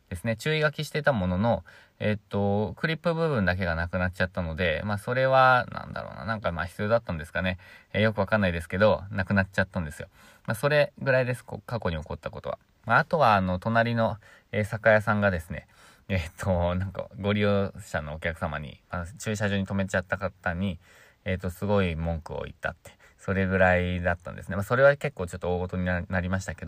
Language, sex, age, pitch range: Japanese, male, 20-39, 90-110 Hz